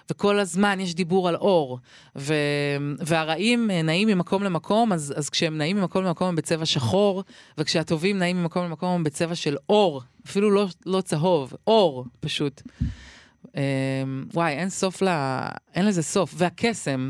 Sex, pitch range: female, 150-195 Hz